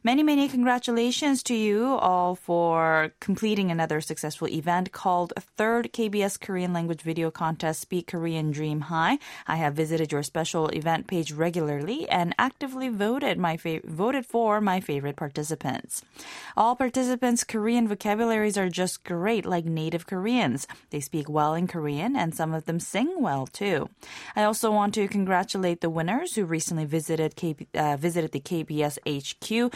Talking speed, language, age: 155 wpm, English, 20-39